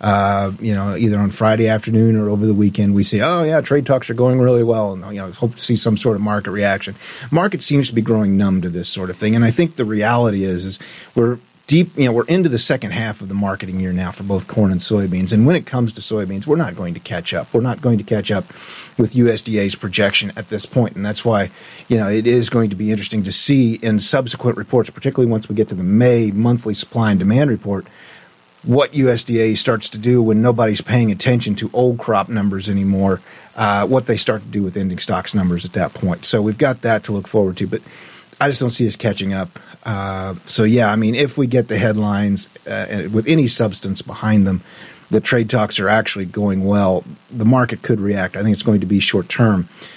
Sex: male